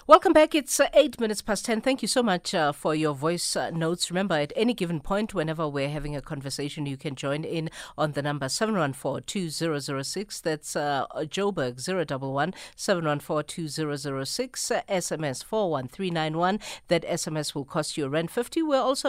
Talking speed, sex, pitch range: 185 wpm, female, 145-195 Hz